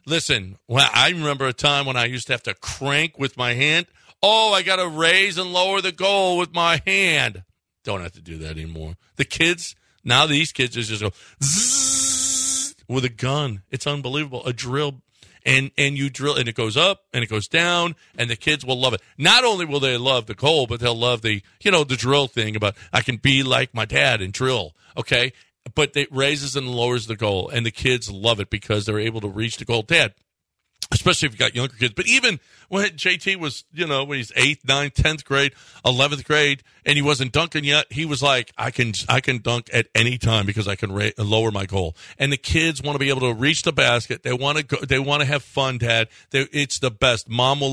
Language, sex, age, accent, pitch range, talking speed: English, male, 50-69, American, 115-150 Hz, 230 wpm